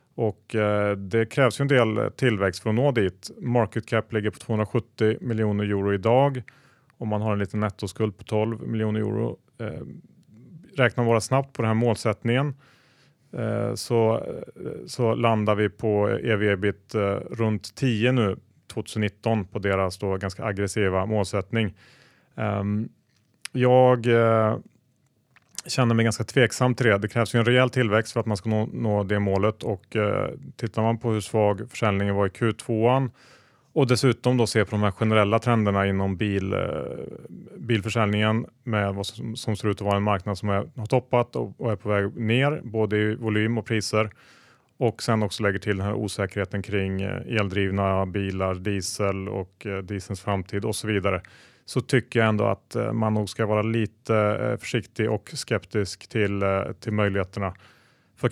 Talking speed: 170 wpm